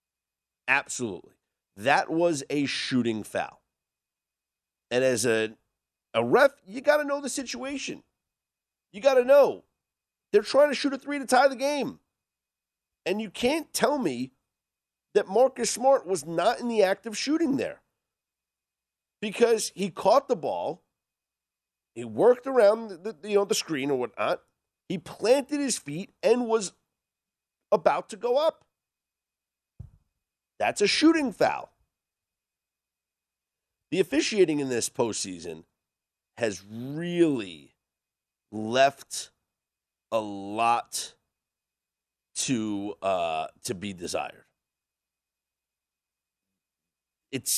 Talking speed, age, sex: 110 wpm, 50-69, male